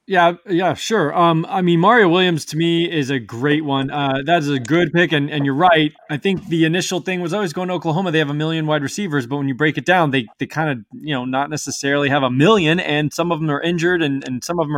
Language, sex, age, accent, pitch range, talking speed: English, male, 20-39, American, 135-165 Hz, 275 wpm